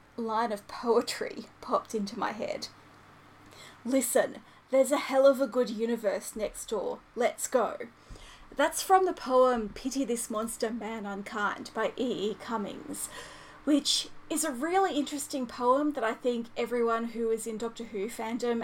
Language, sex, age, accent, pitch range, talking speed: English, female, 30-49, Australian, 225-285 Hz, 150 wpm